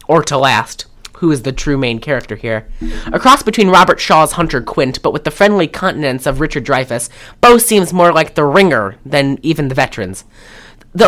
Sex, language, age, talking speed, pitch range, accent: female, English, 20-39, 195 wpm, 130-180 Hz, American